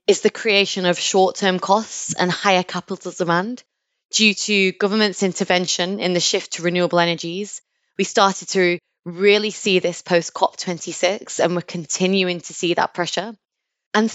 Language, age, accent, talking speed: English, 20-39, British, 150 wpm